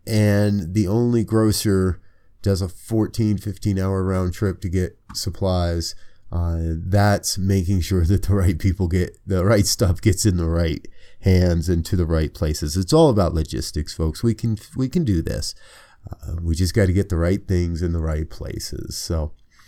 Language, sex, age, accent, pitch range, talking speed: English, male, 30-49, American, 90-110 Hz, 185 wpm